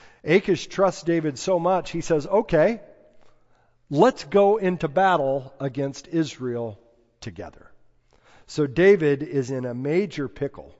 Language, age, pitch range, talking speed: English, 50-69, 125-160 Hz, 120 wpm